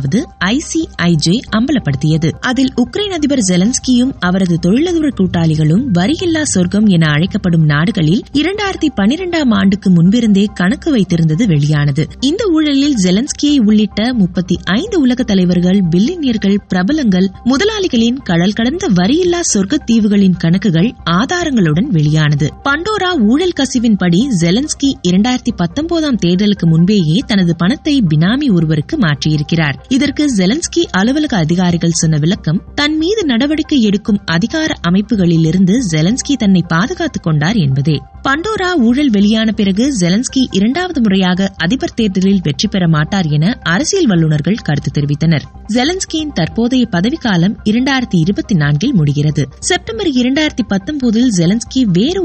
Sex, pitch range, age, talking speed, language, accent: female, 175-275 Hz, 20-39, 110 wpm, Tamil, native